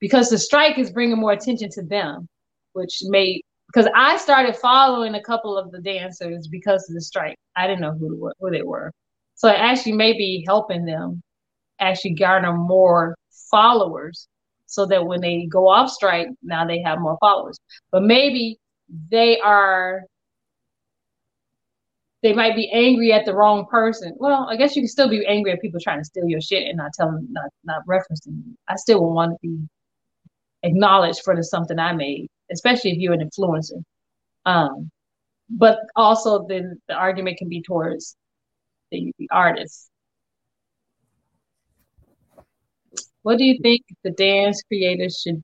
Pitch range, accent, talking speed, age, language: 170-225 Hz, American, 165 wpm, 20-39, English